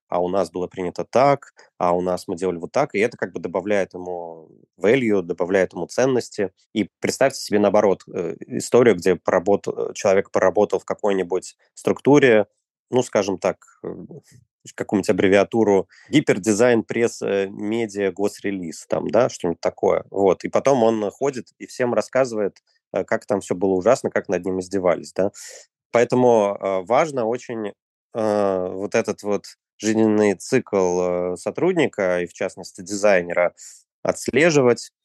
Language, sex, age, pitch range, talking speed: Russian, male, 20-39, 90-105 Hz, 145 wpm